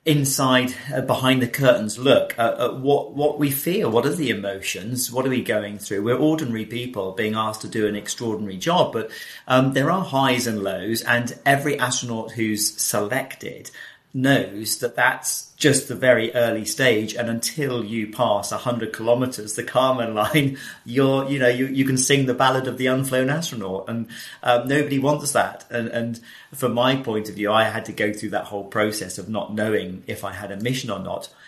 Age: 40-59